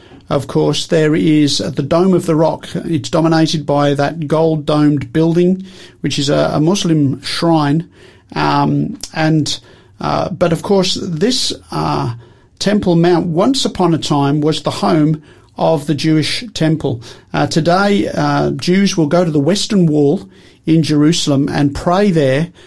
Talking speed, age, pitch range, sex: 150 wpm, 50-69, 145-180 Hz, male